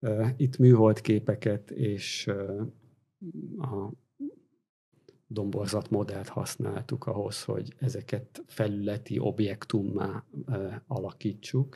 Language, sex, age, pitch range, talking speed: Hungarian, male, 50-69, 105-130 Hz, 65 wpm